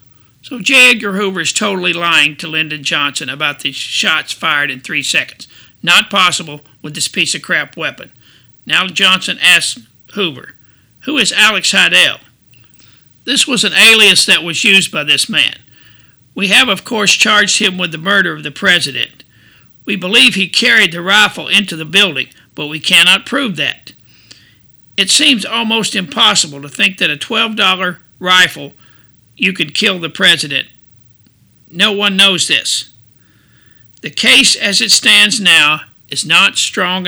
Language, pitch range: English, 145-200 Hz